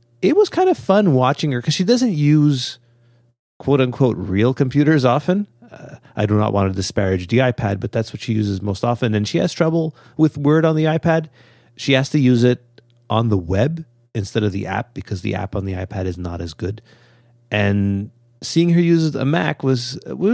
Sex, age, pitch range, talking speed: male, 30-49, 100-130 Hz, 210 wpm